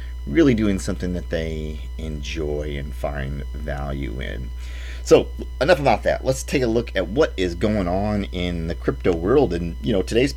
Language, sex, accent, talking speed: English, male, American, 180 wpm